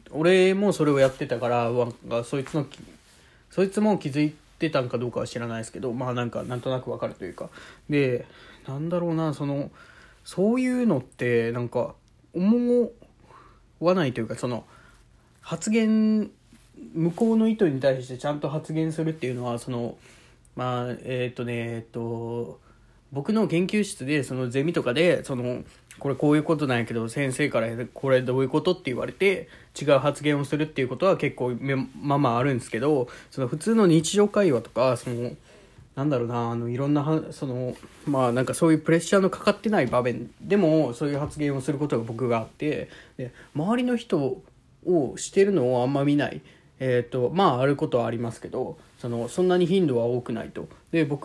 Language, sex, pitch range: Japanese, male, 125-170 Hz